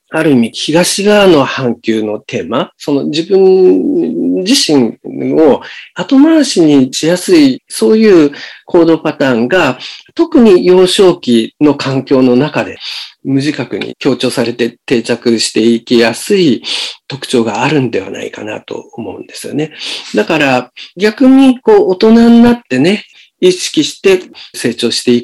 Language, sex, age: Japanese, male, 50-69